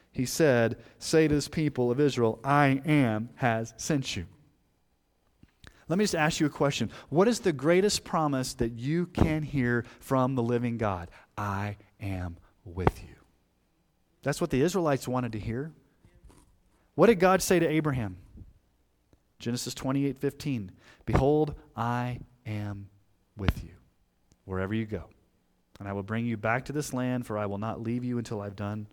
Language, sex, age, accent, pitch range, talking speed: English, male, 30-49, American, 100-140 Hz, 165 wpm